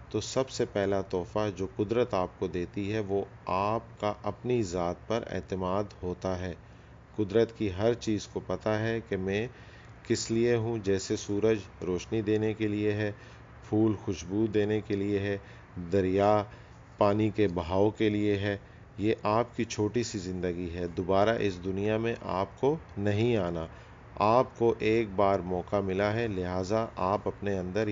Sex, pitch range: male, 95-110 Hz